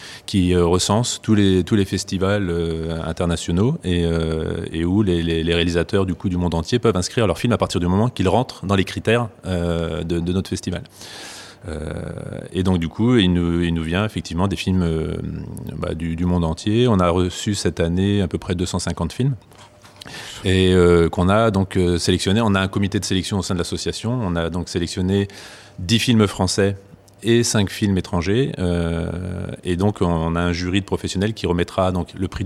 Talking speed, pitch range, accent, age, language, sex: 195 wpm, 85-100 Hz, French, 30-49, French, male